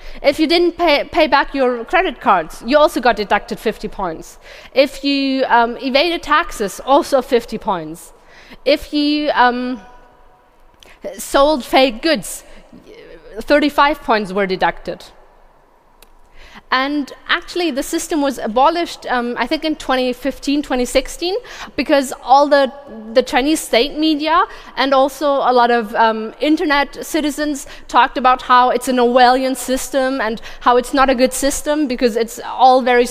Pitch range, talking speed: 240-295 Hz, 140 wpm